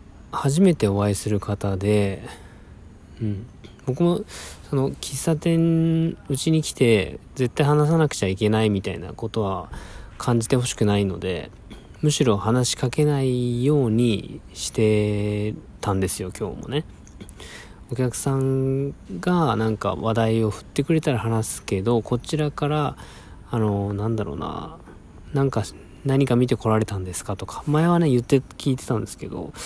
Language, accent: Japanese, native